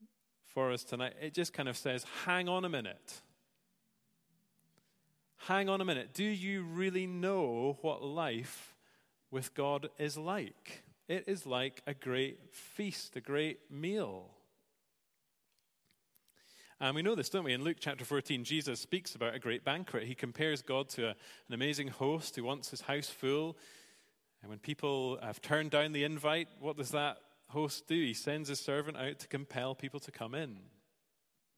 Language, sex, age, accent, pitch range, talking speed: English, male, 30-49, British, 130-175 Hz, 165 wpm